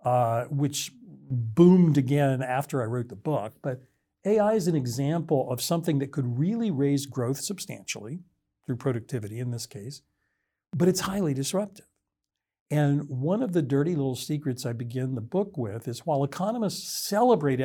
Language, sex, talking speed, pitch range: English, male, 160 wpm, 130-170 Hz